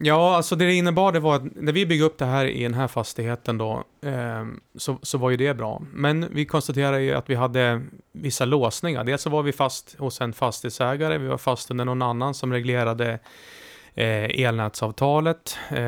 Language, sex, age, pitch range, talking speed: Swedish, male, 30-49, 115-145 Hz, 190 wpm